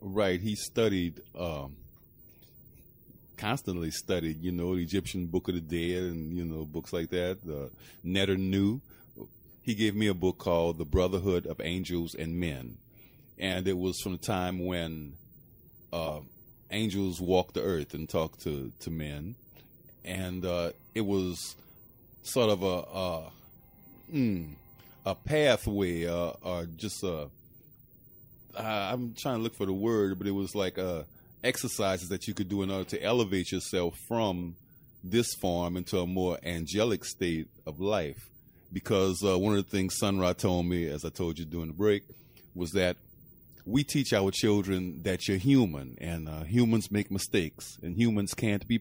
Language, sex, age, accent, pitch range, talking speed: English, male, 30-49, American, 85-105 Hz, 165 wpm